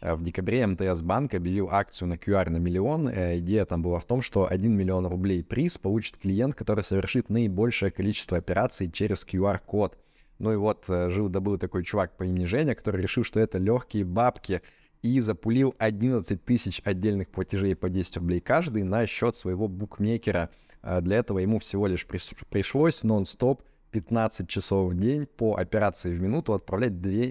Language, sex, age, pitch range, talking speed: Russian, male, 20-39, 95-110 Hz, 165 wpm